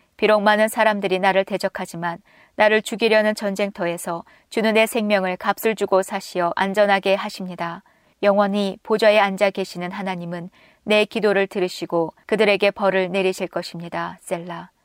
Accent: native